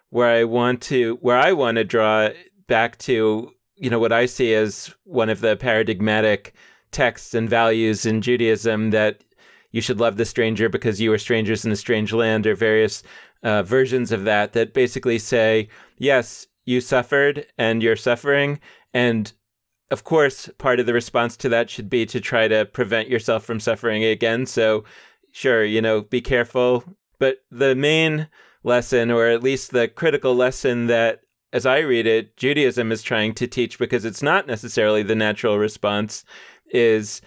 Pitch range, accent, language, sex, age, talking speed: 110-125 Hz, American, English, male, 30-49, 175 wpm